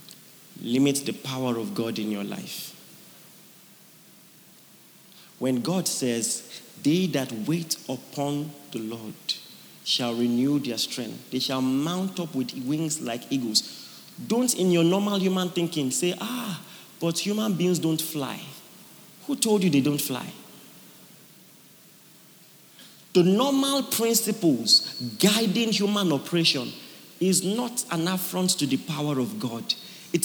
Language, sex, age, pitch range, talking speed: English, male, 40-59, 150-210 Hz, 125 wpm